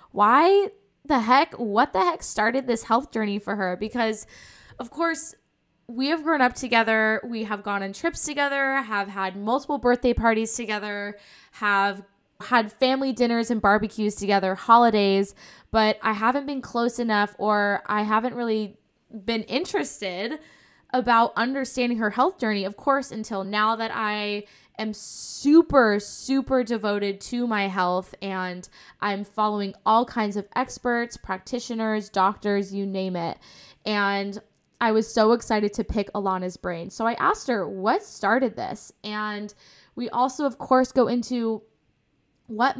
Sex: female